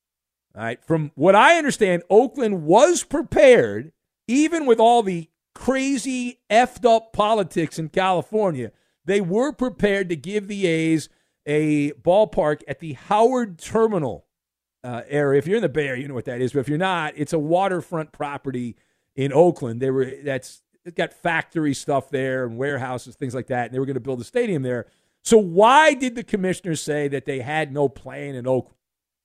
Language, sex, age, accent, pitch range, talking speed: English, male, 50-69, American, 140-220 Hz, 185 wpm